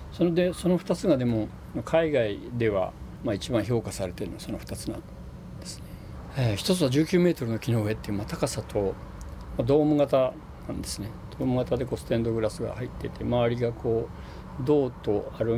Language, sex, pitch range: Japanese, male, 95-125 Hz